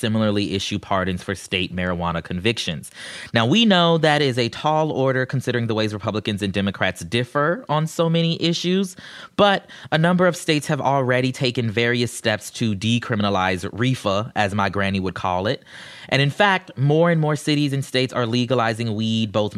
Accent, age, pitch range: American, 30-49, 105-135 Hz